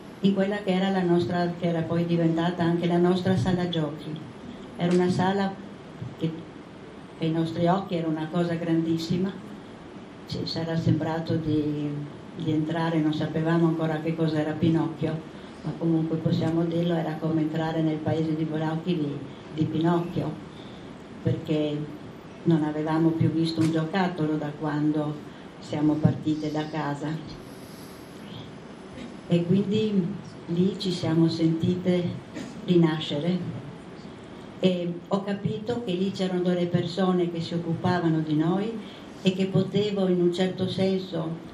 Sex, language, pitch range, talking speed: female, Italian, 160-180 Hz, 135 wpm